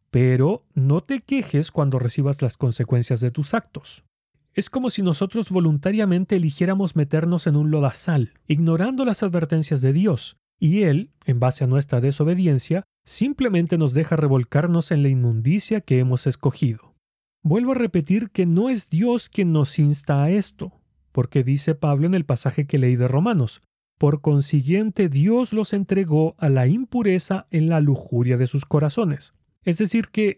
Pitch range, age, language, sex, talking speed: 140-195 Hz, 40-59, Spanish, male, 160 wpm